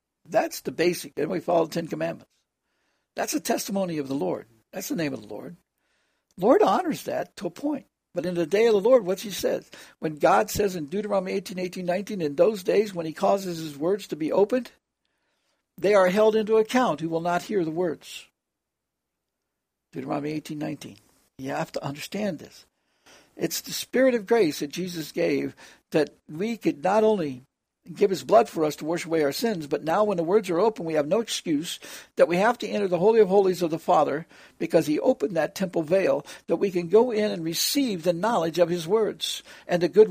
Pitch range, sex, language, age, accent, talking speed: 160-210 Hz, male, English, 60-79, American, 210 wpm